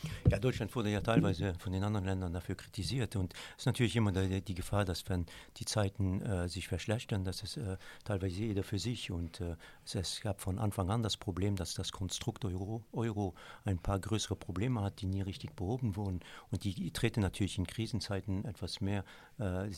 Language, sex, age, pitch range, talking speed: French, male, 50-69, 95-105 Hz, 200 wpm